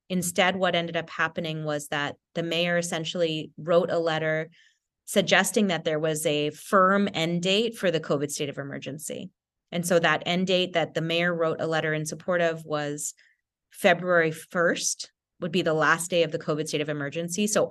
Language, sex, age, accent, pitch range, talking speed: English, female, 30-49, American, 150-180 Hz, 190 wpm